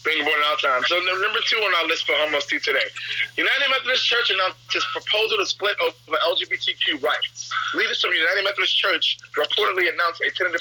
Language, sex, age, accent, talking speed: English, male, 30-49, American, 200 wpm